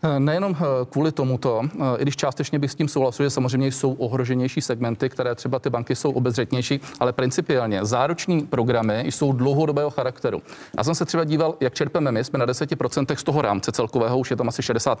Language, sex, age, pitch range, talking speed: Czech, male, 40-59, 120-140 Hz, 190 wpm